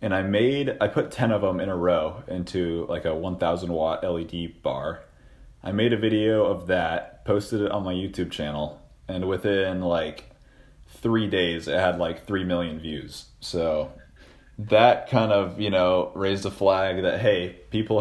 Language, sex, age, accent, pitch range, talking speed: English, male, 30-49, American, 80-100 Hz, 175 wpm